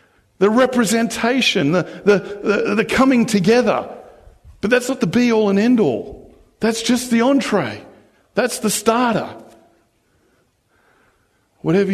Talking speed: 115 wpm